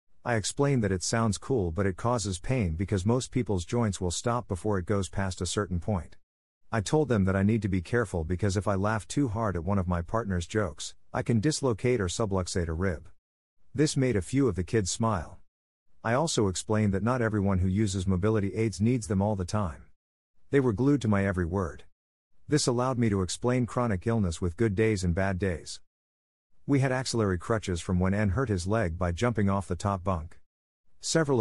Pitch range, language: 90-115 Hz, English